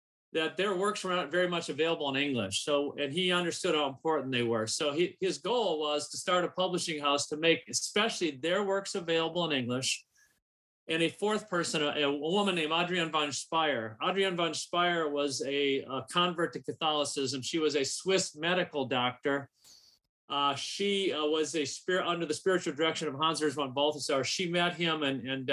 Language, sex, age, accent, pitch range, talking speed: English, male, 40-59, American, 135-170 Hz, 195 wpm